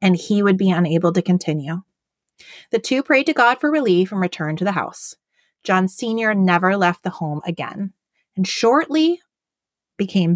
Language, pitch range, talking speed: English, 175-255 Hz, 170 wpm